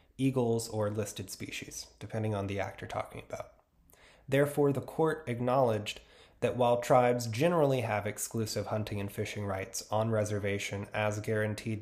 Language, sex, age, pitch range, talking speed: English, male, 20-39, 105-130 Hz, 145 wpm